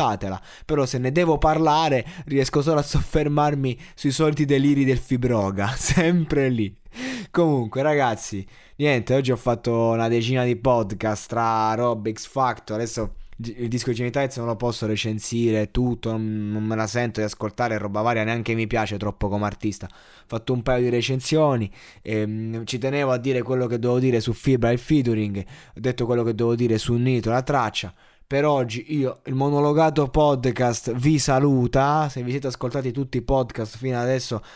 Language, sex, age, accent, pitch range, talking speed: Italian, male, 20-39, native, 115-140 Hz, 175 wpm